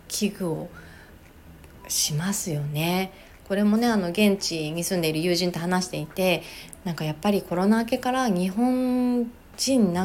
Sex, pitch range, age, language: female, 160-220 Hz, 30-49, Japanese